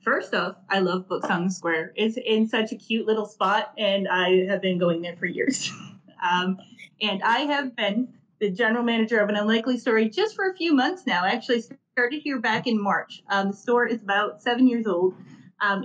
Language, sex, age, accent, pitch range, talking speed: English, female, 30-49, American, 190-235 Hz, 215 wpm